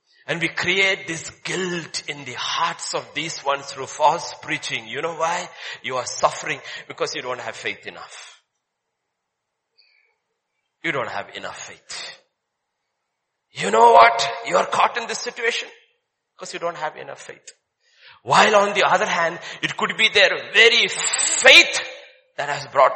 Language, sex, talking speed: English, male, 155 wpm